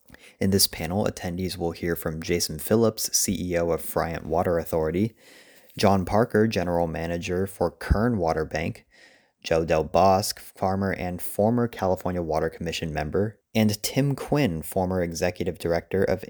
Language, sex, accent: English, male, American